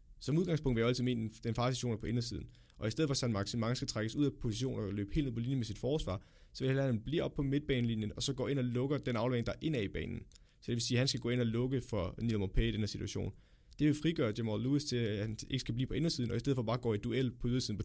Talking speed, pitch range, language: 315 wpm, 105-130 Hz, Danish